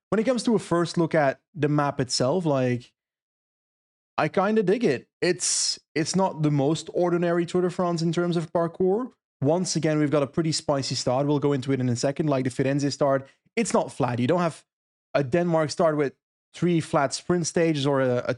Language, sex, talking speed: English, male, 215 wpm